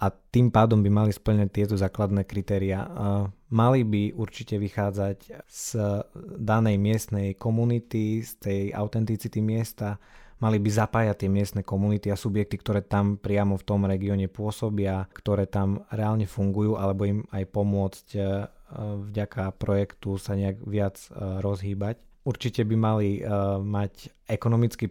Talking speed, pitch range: 130 wpm, 100-110 Hz